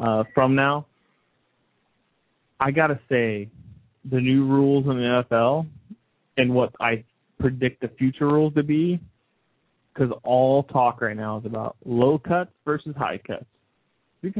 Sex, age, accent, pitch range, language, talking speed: male, 30-49, American, 120-140 Hz, English, 145 wpm